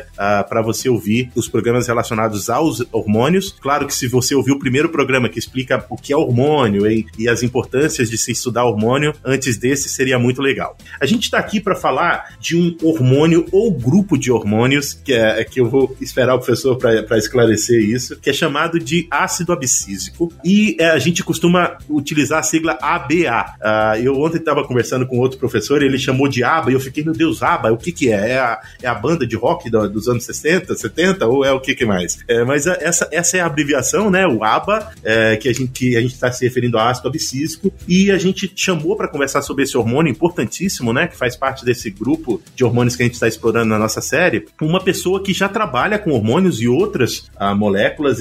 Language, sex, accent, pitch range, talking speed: Portuguese, male, Brazilian, 120-165 Hz, 215 wpm